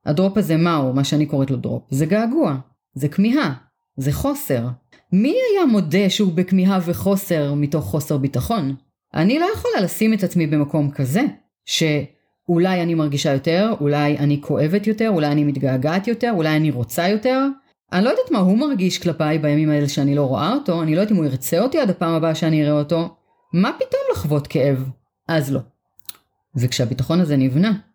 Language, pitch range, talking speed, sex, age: Hebrew, 140-195 Hz, 175 wpm, female, 30-49